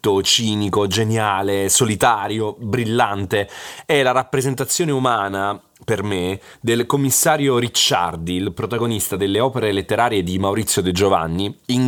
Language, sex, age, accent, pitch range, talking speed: Italian, male, 30-49, native, 100-130 Hz, 115 wpm